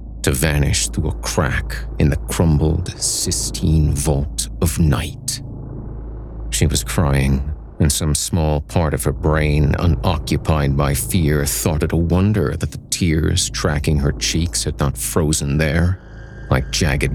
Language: English